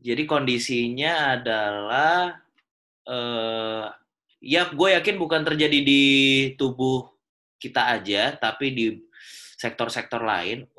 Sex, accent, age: male, Indonesian, 20-39